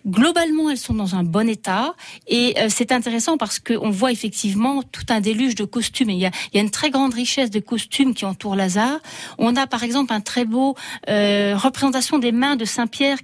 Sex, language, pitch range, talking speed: female, French, 210-270 Hz, 225 wpm